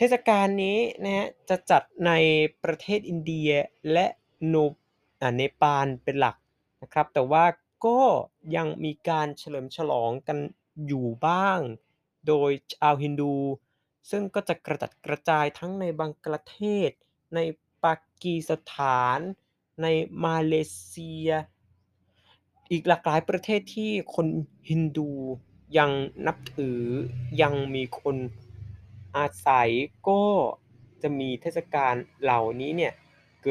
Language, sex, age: Thai, male, 20-39